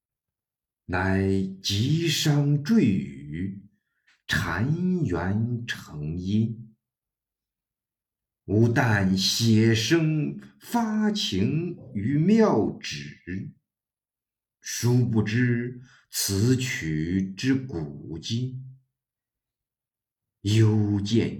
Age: 50-69